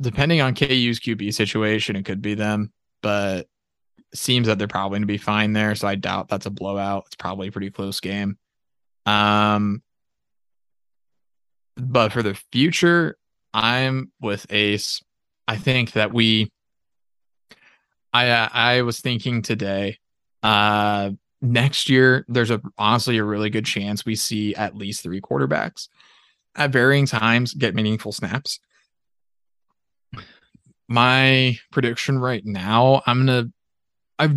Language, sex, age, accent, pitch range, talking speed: English, male, 20-39, American, 100-120 Hz, 135 wpm